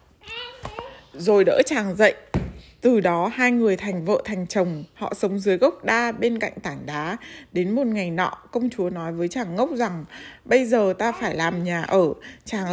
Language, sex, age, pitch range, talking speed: Vietnamese, female, 20-39, 185-250 Hz, 190 wpm